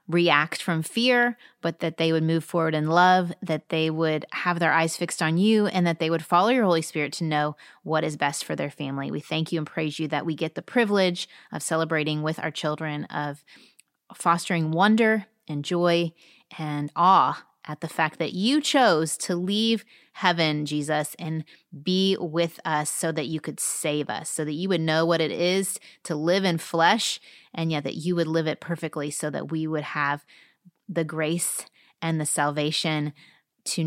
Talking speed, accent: 195 wpm, American